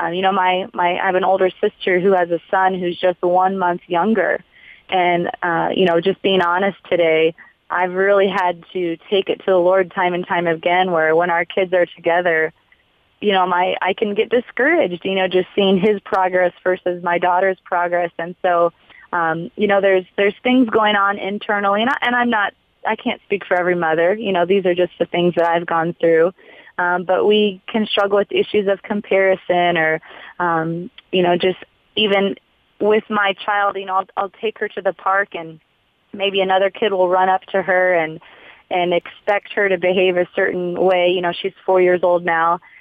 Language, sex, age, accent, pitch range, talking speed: English, female, 20-39, American, 175-195 Hz, 205 wpm